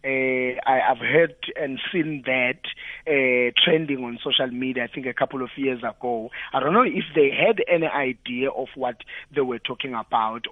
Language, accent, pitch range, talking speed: English, South African, 140-190 Hz, 190 wpm